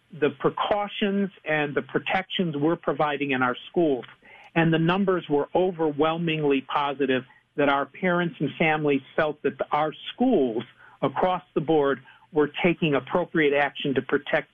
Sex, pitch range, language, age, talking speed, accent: male, 140-165 Hz, English, 50-69, 140 wpm, American